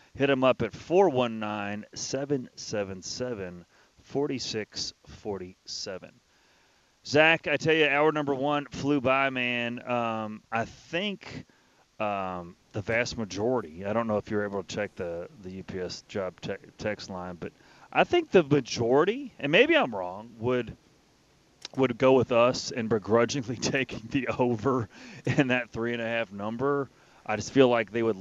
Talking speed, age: 160 wpm, 30-49